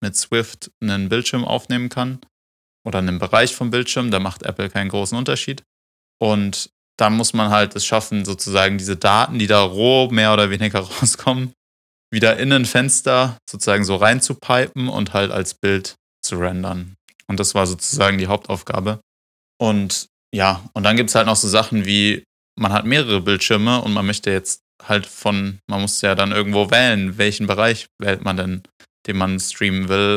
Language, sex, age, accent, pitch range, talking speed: German, male, 20-39, German, 95-115 Hz, 175 wpm